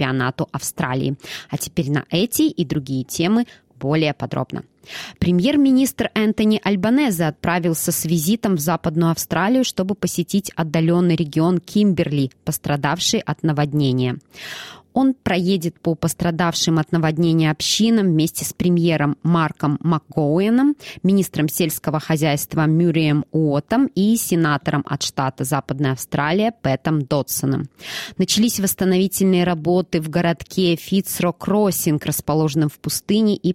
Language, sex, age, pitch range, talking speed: Russian, female, 20-39, 150-185 Hz, 115 wpm